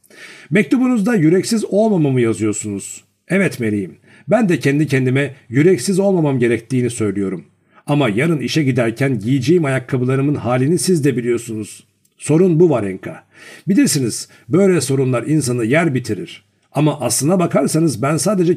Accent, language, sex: native, Turkish, male